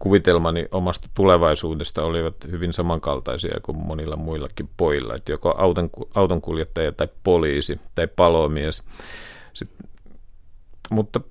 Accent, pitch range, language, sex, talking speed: native, 80-105 Hz, Finnish, male, 105 wpm